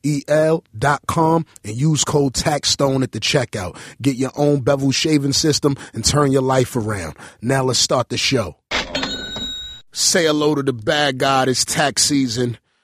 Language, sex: English, male